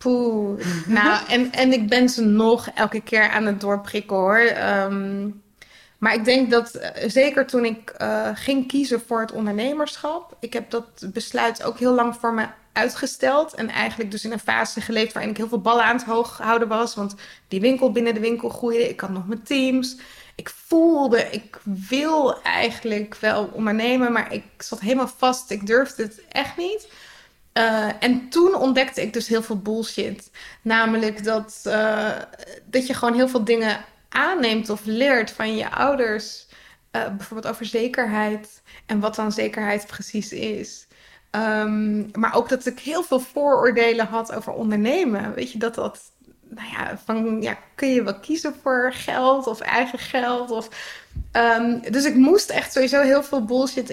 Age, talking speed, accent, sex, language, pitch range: 20-39, 175 wpm, Dutch, female, Dutch, 215-255 Hz